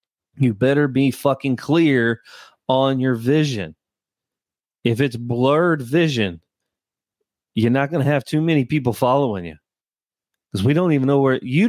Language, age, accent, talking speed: English, 30-49, American, 150 wpm